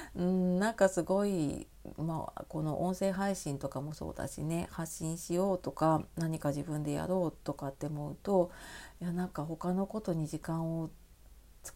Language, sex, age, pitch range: Japanese, female, 40-59, 150-185 Hz